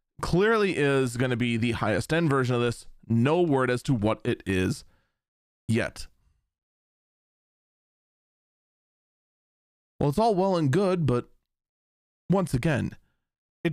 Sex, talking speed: male, 125 wpm